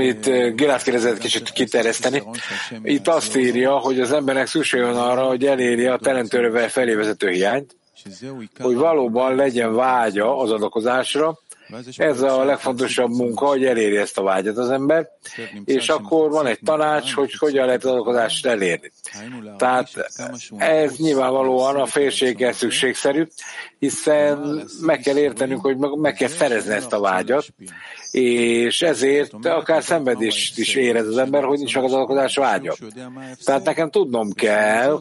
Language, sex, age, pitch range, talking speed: English, male, 60-79, 120-145 Hz, 135 wpm